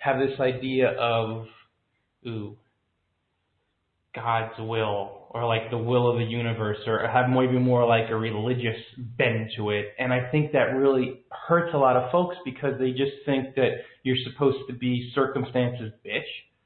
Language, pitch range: English, 120-145 Hz